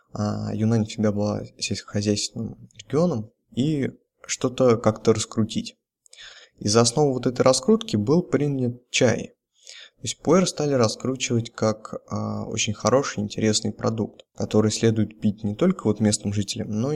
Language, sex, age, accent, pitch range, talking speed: Russian, male, 20-39, native, 105-130 Hz, 135 wpm